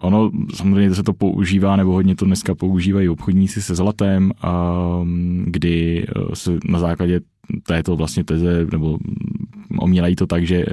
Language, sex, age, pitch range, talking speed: Czech, male, 20-39, 85-100 Hz, 140 wpm